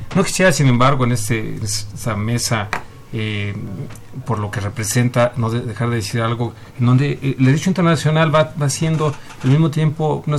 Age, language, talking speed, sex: 40-59, Spanish, 180 wpm, male